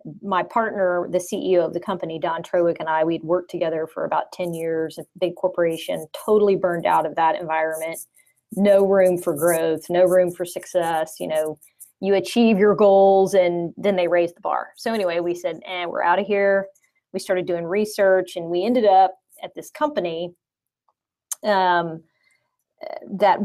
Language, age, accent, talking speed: English, 30-49, American, 175 wpm